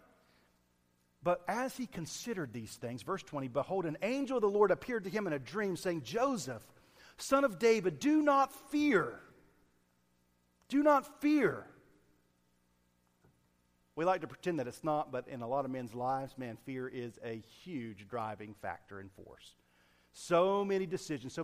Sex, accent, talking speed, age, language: male, American, 160 wpm, 40-59, English